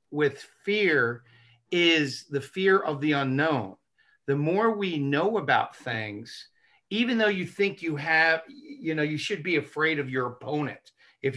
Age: 50-69